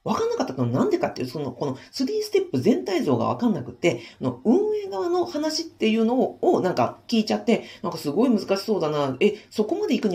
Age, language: 40-59, Japanese